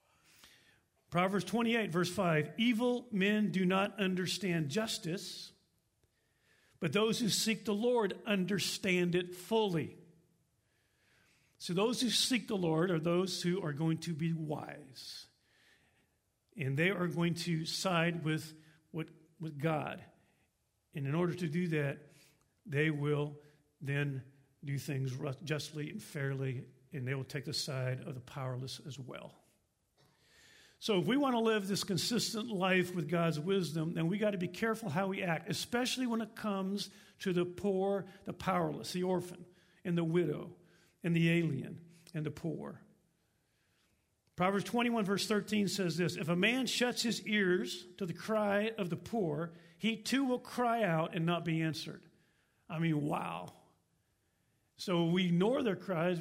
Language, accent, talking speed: English, American, 150 wpm